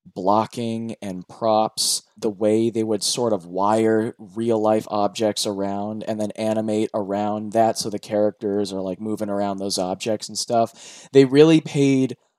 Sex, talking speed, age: male, 160 wpm, 20-39